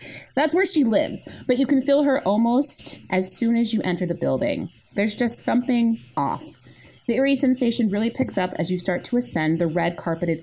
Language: English